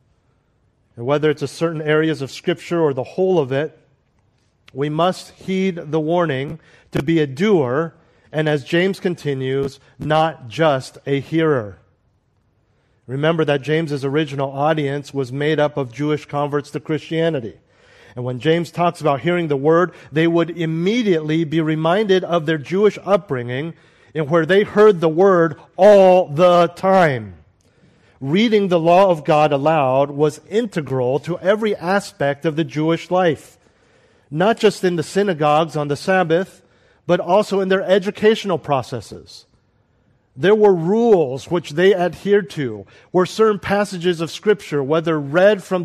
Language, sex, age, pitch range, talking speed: English, male, 40-59, 140-185 Hz, 150 wpm